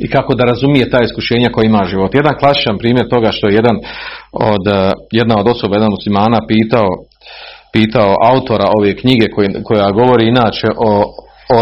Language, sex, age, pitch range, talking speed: Croatian, male, 40-59, 115-160 Hz, 170 wpm